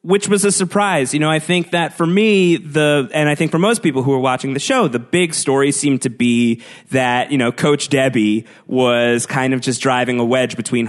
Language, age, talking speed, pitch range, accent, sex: English, 30-49, 230 wpm, 120-155 Hz, American, male